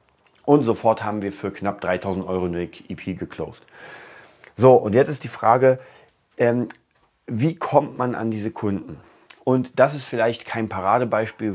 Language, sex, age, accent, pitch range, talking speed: German, male, 30-49, German, 95-115 Hz, 155 wpm